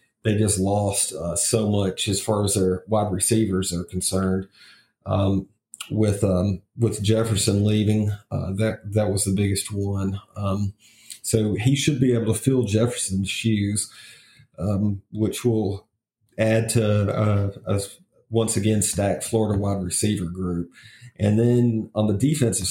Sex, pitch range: male, 100-115 Hz